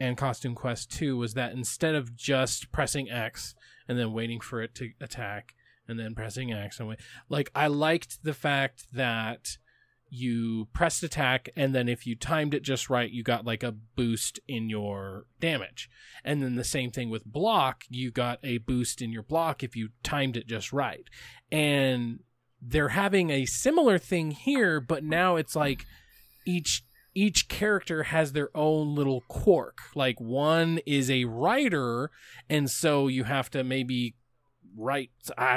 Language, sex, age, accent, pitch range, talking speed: English, male, 20-39, American, 120-150 Hz, 170 wpm